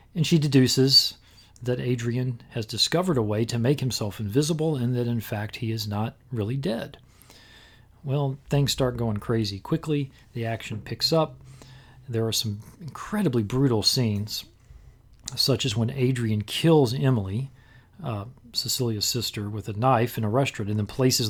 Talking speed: 160 wpm